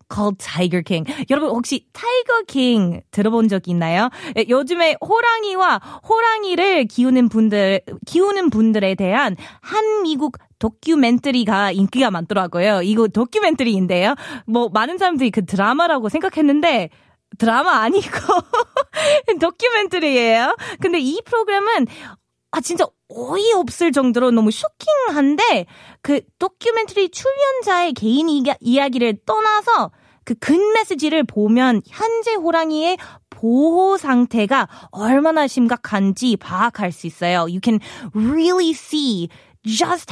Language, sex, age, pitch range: Korean, female, 20-39, 215-335 Hz